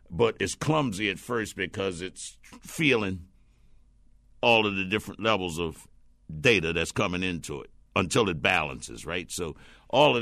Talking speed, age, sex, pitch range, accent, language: 155 wpm, 60-79, male, 85-105 Hz, American, English